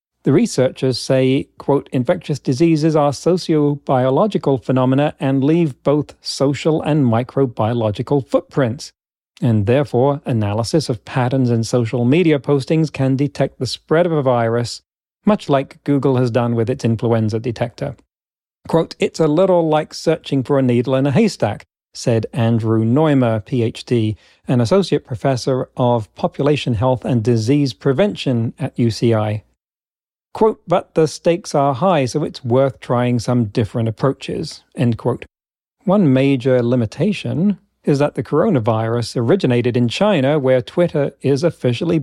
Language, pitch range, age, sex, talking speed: English, 120-155 Hz, 40-59, male, 140 wpm